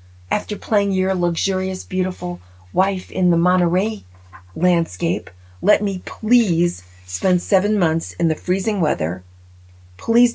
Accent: American